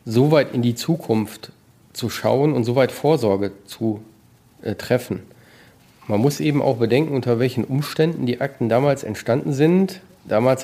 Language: German